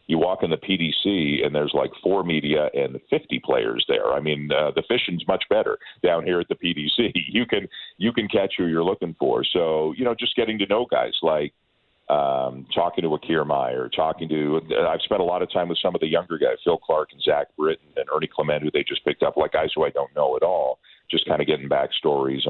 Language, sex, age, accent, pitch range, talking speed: English, male, 40-59, American, 70-90 Hz, 235 wpm